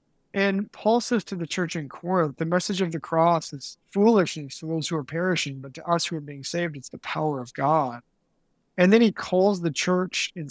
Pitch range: 150-185 Hz